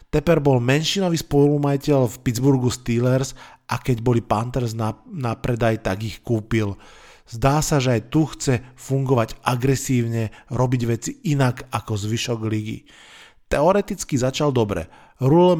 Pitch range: 115-135 Hz